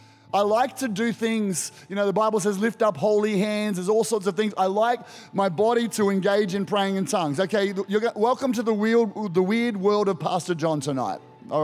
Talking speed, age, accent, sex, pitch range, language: 210 wpm, 30-49, Australian, male, 145-195 Hz, English